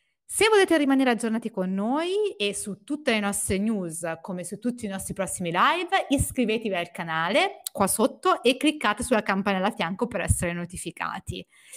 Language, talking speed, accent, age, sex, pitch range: Italian, 170 wpm, native, 30-49, female, 190-285 Hz